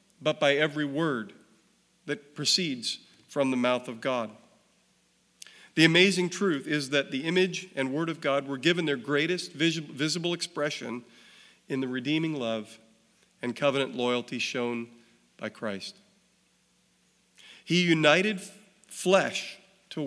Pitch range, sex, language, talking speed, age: 135-190 Hz, male, English, 125 wpm, 40-59